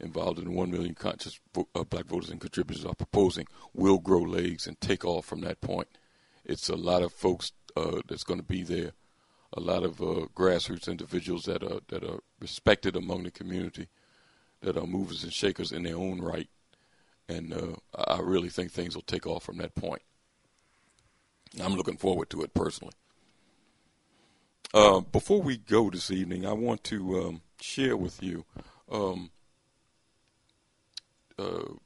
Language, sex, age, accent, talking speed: English, male, 50-69, American, 165 wpm